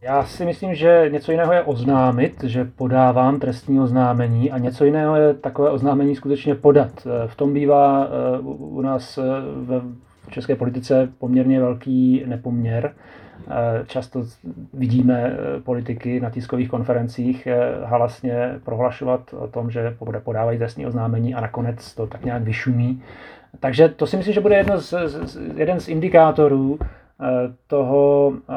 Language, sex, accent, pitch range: Czech, male, native, 125-140 Hz